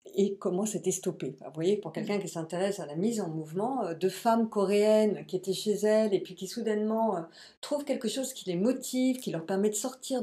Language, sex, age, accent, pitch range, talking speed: French, female, 50-69, French, 170-215 Hz, 215 wpm